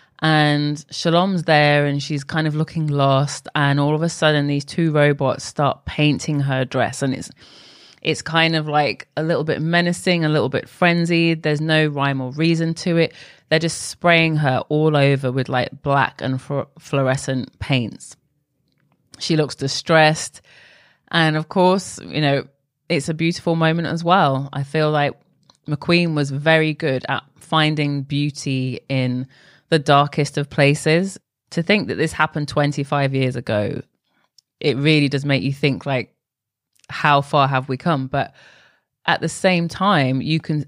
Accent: British